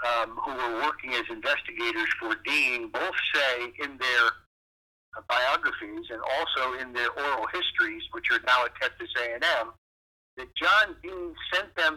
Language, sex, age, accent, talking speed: English, male, 60-79, American, 155 wpm